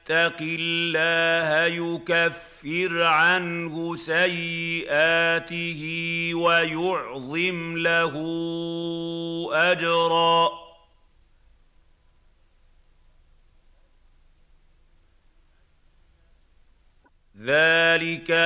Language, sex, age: Arabic, male, 50-69